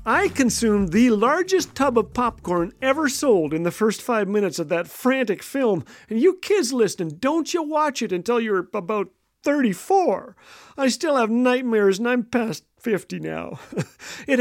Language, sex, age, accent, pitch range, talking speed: English, male, 50-69, American, 180-255 Hz, 165 wpm